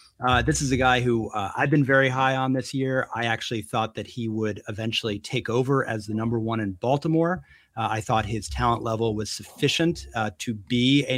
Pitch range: 110-130 Hz